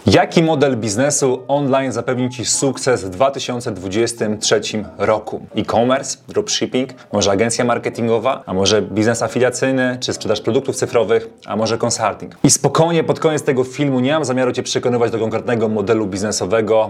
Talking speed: 145 wpm